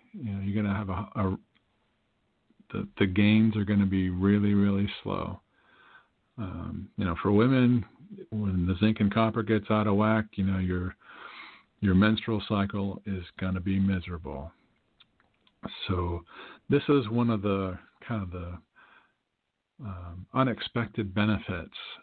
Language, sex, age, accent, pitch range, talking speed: English, male, 50-69, American, 95-115 Hz, 140 wpm